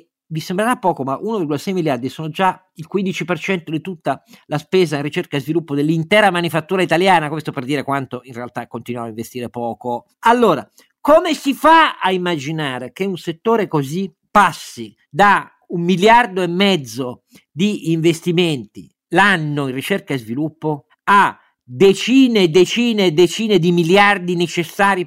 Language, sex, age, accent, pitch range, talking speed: Italian, male, 50-69, native, 140-200 Hz, 150 wpm